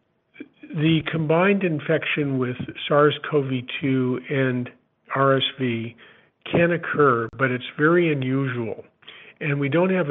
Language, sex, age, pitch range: English, male, 50-69, 125-145 Hz